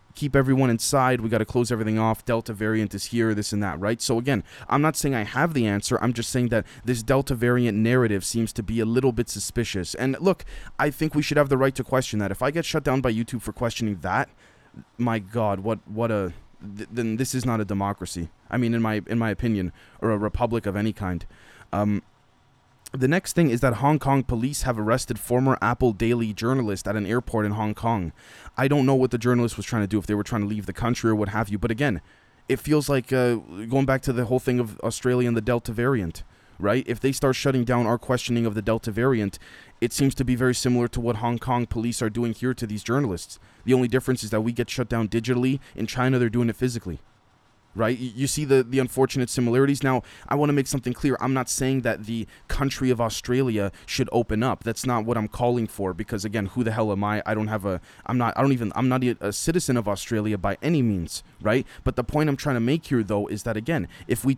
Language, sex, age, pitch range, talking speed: English, male, 20-39, 110-130 Hz, 245 wpm